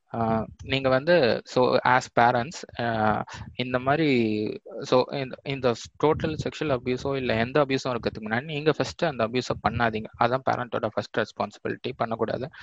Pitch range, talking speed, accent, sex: 115-135 Hz, 130 wpm, native, male